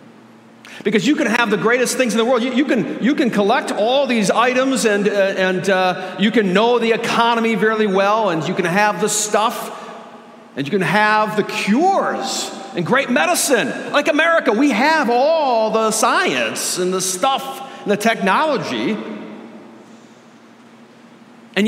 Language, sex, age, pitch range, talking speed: English, male, 50-69, 170-240 Hz, 165 wpm